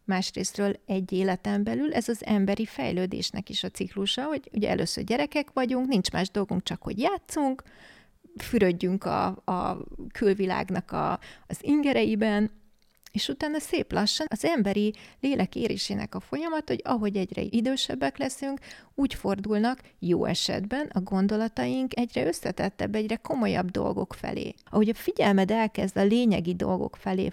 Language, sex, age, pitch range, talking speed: Hungarian, female, 30-49, 190-235 Hz, 135 wpm